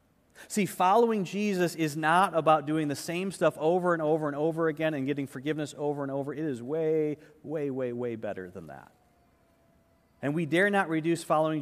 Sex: male